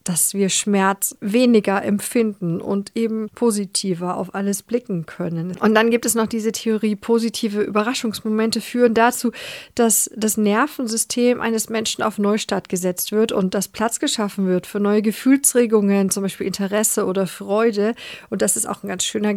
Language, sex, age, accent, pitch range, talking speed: German, female, 40-59, German, 195-235 Hz, 160 wpm